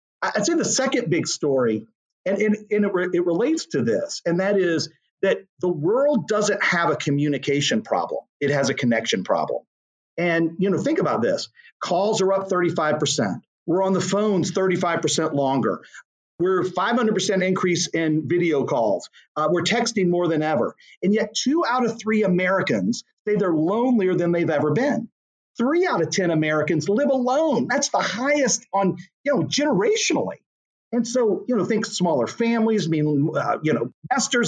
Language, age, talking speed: English, 40-59, 170 wpm